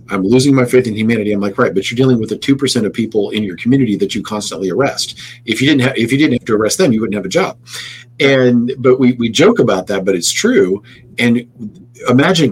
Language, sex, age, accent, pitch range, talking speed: English, male, 40-59, American, 105-130 Hz, 250 wpm